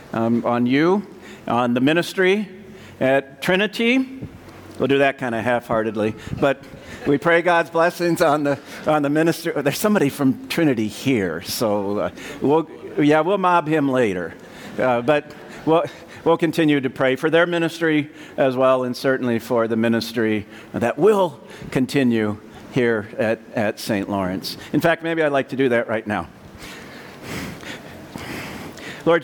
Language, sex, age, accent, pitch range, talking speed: English, male, 50-69, American, 130-165 Hz, 150 wpm